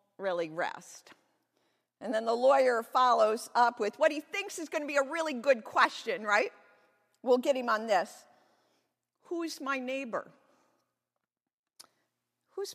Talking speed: 140 wpm